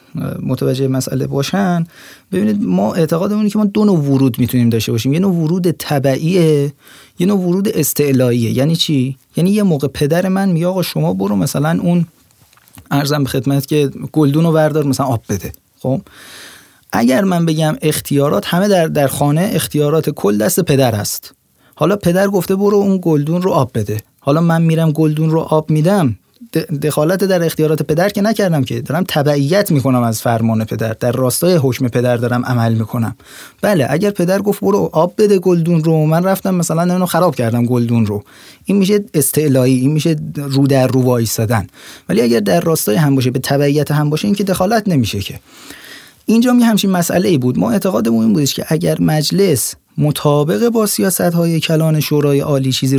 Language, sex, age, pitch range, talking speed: Persian, male, 30-49, 135-180 Hz, 175 wpm